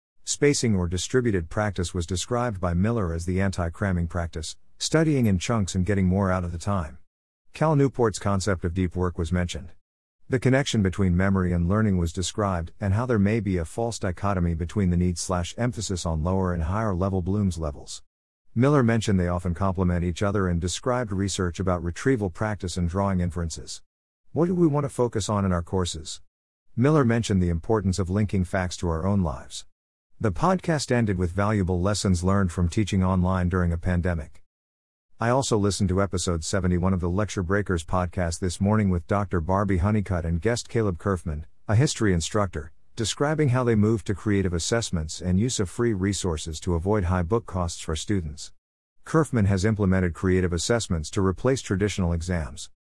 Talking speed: 180 wpm